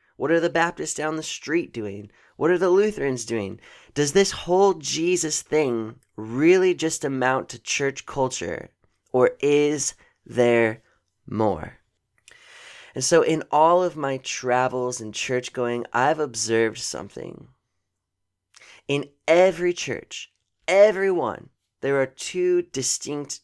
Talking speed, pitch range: 130 wpm, 125-170 Hz